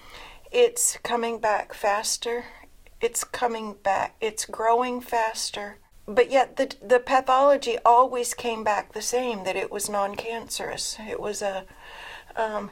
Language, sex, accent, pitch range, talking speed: English, female, American, 215-255 Hz, 130 wpm